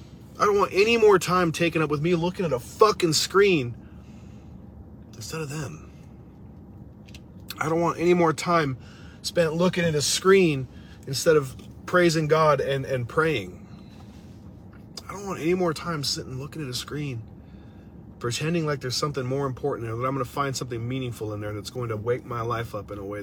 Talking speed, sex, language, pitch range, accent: 190 wpm, male, English, 120-175 Hz, American